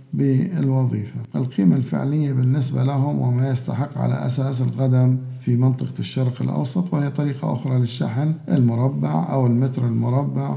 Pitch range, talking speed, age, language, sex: 120-135 Hz, 125 wpm, 50-69, Arabic, male